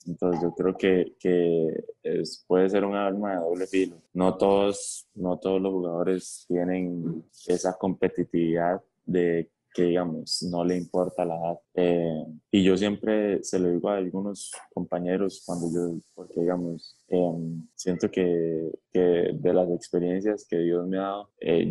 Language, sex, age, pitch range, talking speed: Spanish, male, 20-39, 85-95 Hz, 160 wpm